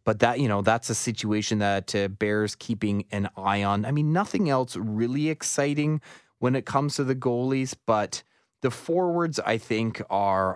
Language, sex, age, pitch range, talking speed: English, male, 20-39, 100-130 Hz, 180 wpm